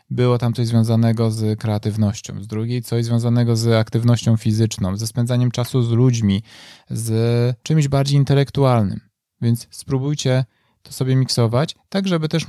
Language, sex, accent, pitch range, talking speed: Polish, male, native, 115-140 Hz, 145 wpm